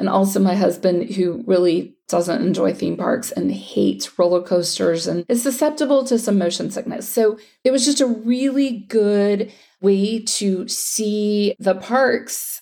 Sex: female